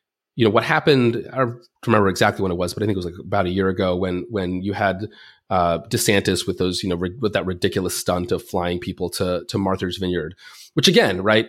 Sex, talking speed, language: male, 240 wpm, English